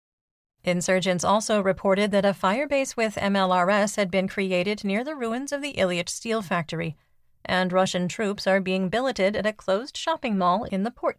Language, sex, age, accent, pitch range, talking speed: English, female, 40-59, American, 180-215 Hz, 175 wpm